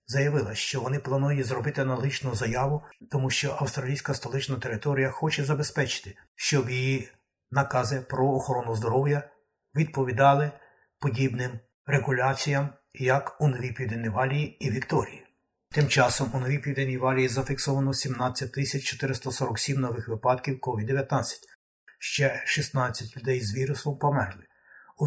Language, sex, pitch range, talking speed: Ukrainian, male, 125-140 Hz, 115 wpm